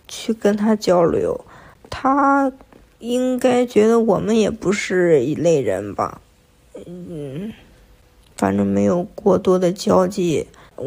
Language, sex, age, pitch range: Chinese, female, 20-39, 185-230 Hz